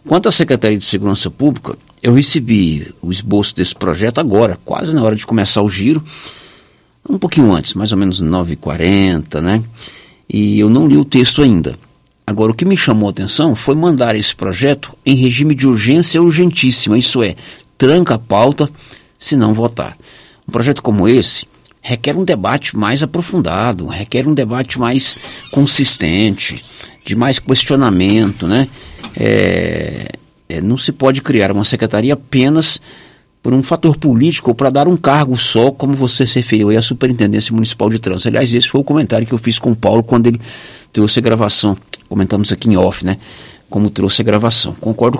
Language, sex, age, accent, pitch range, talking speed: Portuguese, male, 60-79, Brazilian, 105-140 Hz, 175 wpm